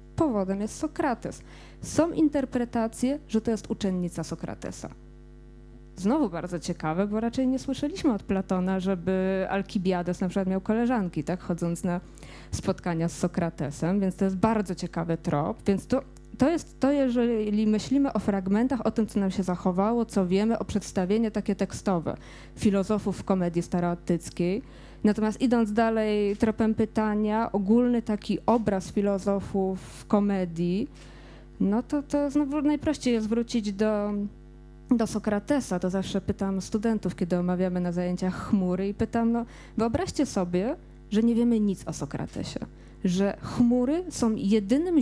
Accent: native